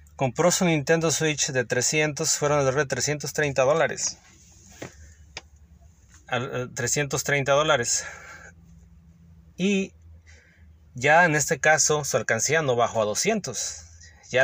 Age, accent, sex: 30-49, Mexican, male